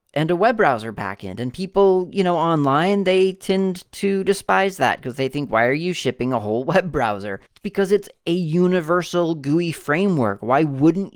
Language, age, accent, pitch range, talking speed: English, 30-49, American, 115-160 Hz, 190 wpm